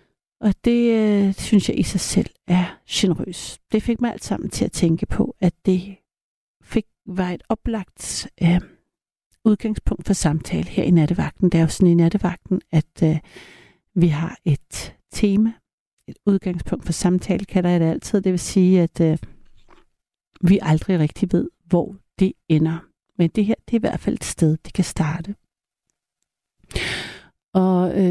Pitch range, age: 175-205 Hz, 60-79